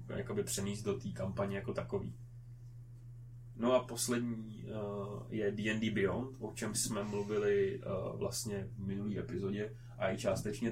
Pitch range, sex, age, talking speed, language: 105-120 Hz, male, 20-39, 145 wpm, Czech